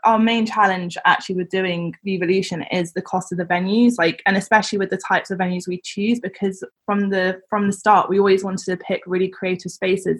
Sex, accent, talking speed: female, British, 225 wpm